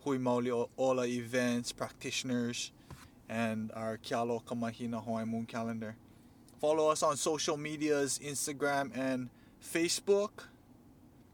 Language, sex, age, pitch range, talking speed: English, male, 20-39, 110-130 Hz, 105 wpm